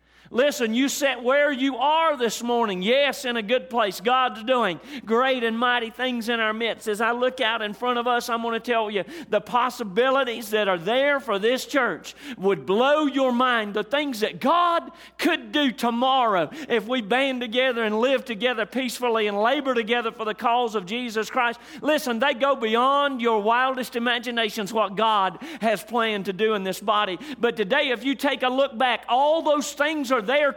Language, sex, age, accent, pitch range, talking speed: English, male, 40-59, American, 230-275 Hz, 200 wpm